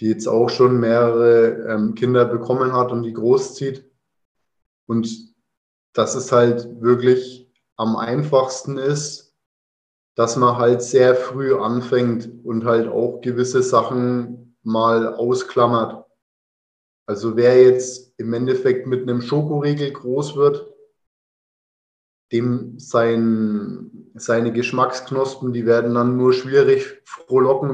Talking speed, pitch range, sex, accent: 115 wpm, 115-135 Hz, male, German